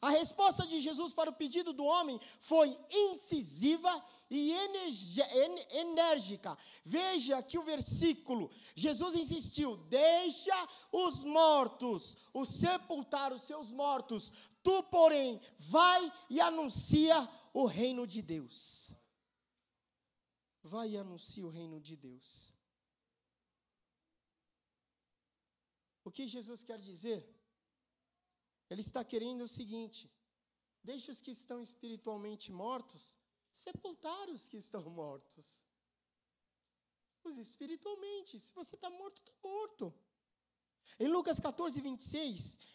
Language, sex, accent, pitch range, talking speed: Portuguese, male, Brazilian, 220-320 Hz, 105 wpm